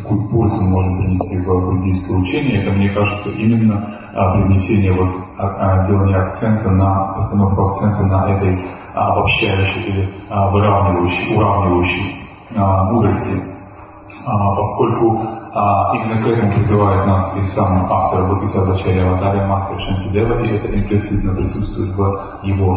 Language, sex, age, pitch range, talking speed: English, male, 30-49, 95-105 Hz, 125 wpm